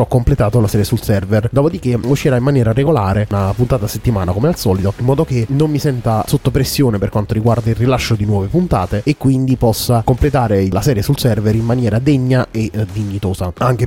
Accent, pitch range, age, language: native, 105-130 Hz, 30-49, Italian